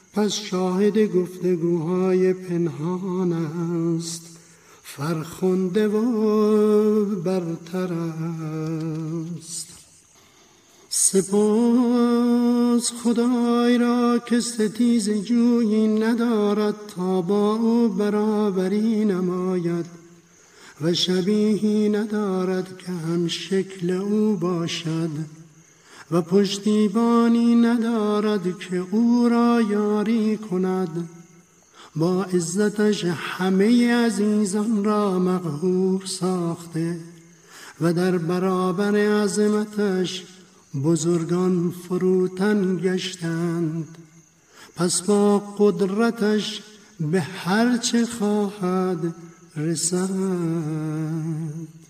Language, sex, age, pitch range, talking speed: Persian, male, 50-69, 170-210 Hz, 65 wpm